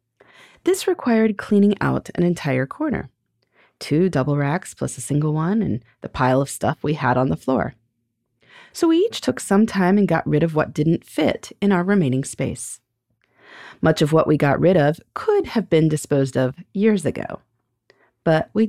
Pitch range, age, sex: 135-210 Hz, 30-49, female